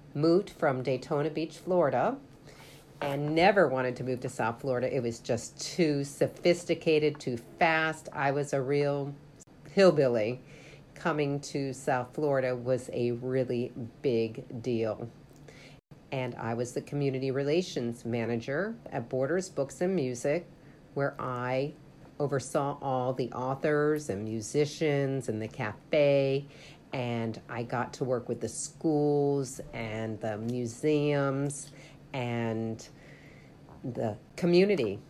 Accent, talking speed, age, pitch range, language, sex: American, 120 wpm, 50-69, 125-150 Hz, English, female